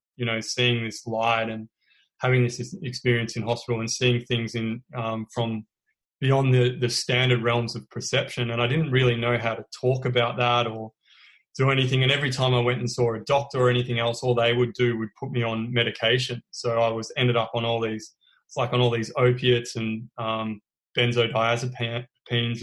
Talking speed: 200 wpm